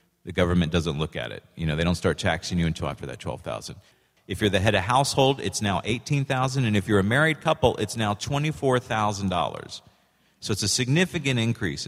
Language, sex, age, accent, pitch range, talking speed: English, male, 40-59, American, 100-135 Hz, 200 wpm